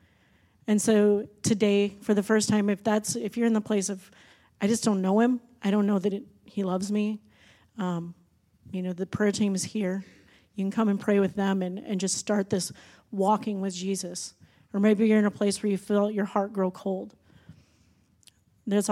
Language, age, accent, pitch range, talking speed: English, 30-49, American, 190-210 Hz, 205 wpm